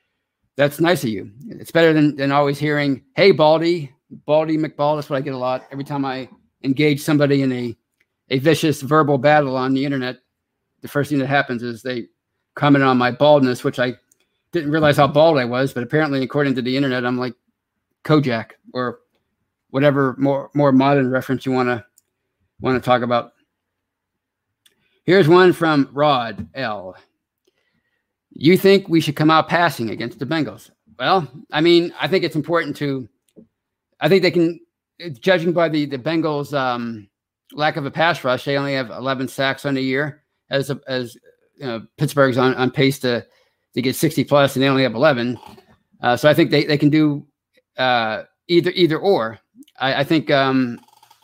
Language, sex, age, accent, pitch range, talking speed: English, male, 50-69, American, 130-155 Hz, 180 wpm